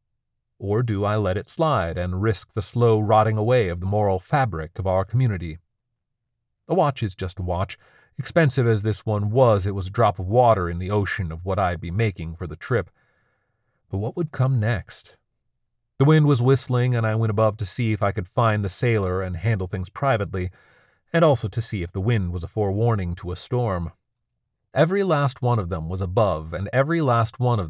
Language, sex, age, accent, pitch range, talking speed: English, male, 40-59, American, 95-120 Hz, 210 wpm